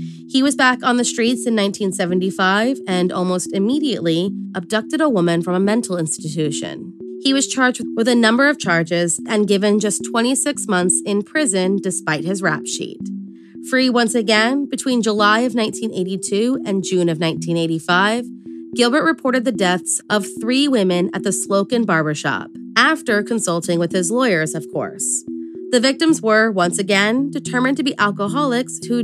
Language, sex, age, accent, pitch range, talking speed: English, female, 20-39, American, 175-240 Hz, 155 wpm